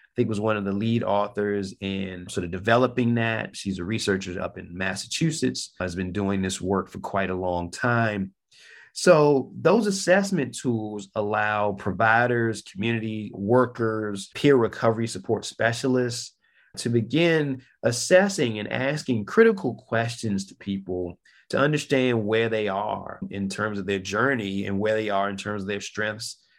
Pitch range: 100-135 Hz